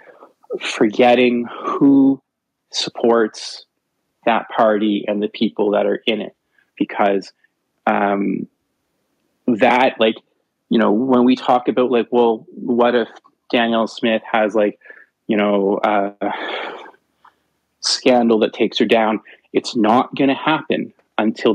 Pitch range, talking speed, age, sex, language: 105-130 Hz, 125 wpm, 20-39, male, English